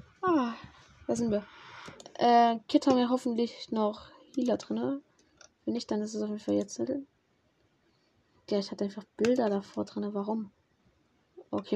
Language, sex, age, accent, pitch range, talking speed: German, female, 10-29, German, 195-265 Hz, 160 wpm